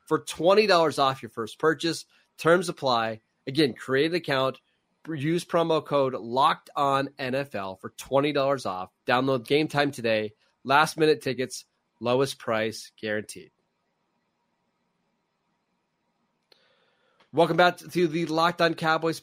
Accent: American